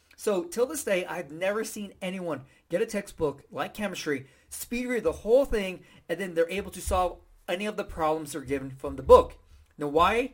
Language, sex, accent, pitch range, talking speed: English, male, American, 160-215 Hz, 205 wpm